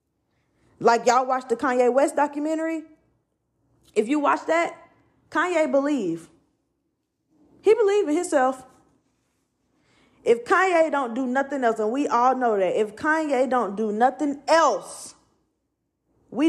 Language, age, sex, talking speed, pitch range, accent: English, 20-39, female, 125 wpm, 230-290 Hz, American